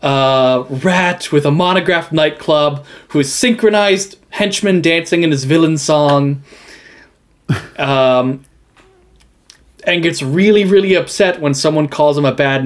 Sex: male